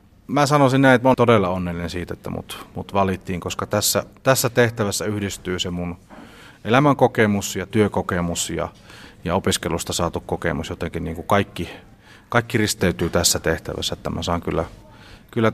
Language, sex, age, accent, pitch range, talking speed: Finnish, male, 30-49, native, 90-110 Hz, 160 wpm